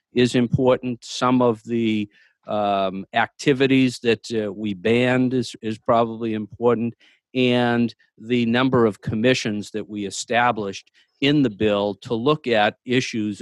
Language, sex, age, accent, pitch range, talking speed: English, male, 50-69, American, 100-120 Hz, 135 wpm